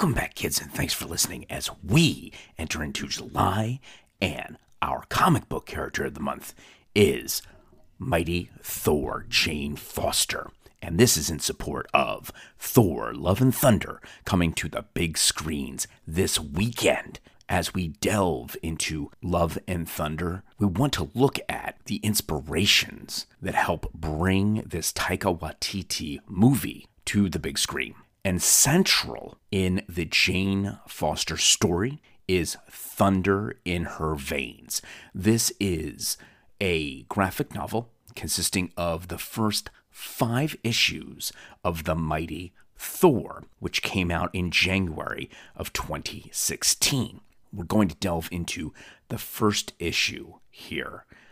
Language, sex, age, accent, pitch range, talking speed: English, male, 40-59, American, 85-105 Hz, 130 wpm